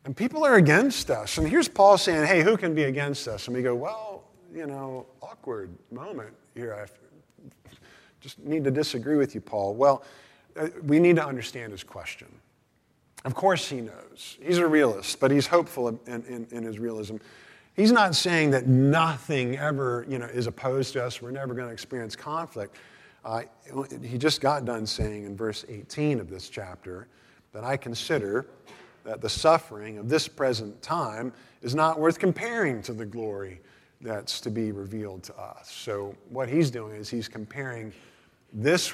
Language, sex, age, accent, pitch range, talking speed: English, male, 50-69, American, 110-150 Hz, 175 wpm